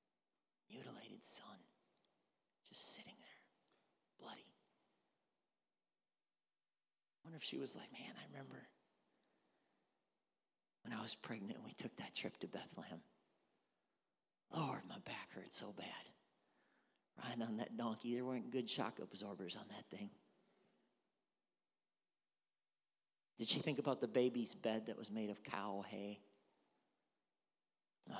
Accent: American